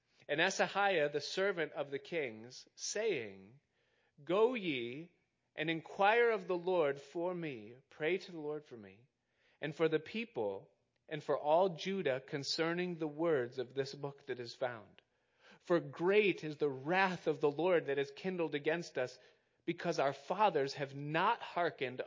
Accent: American